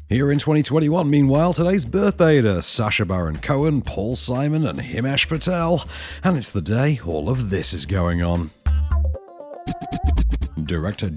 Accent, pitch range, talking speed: British, 95-150 Hz, 140 wpm